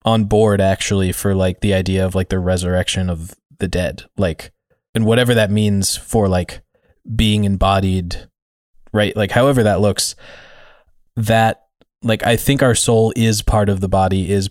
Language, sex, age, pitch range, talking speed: English, male, 20-39, 90-110 Hz, 165 wpm